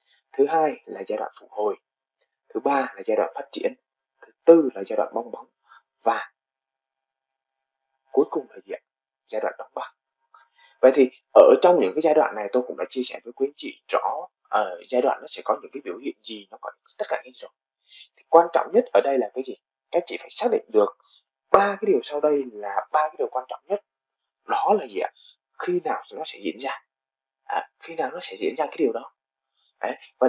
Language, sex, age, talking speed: Vietnamese, male, 20-39, 230 wpm